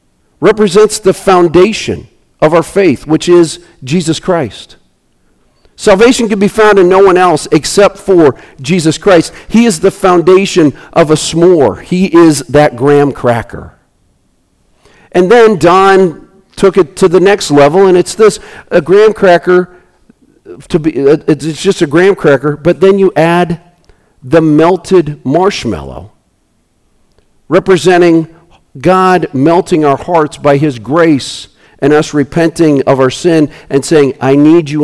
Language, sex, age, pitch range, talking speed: English, male, 50-69, 140-180 Hz, 140 wpm